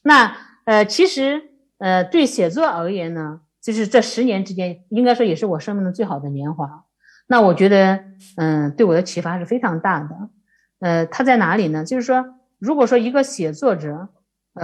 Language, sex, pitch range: Chinese, female, 165-225 Hz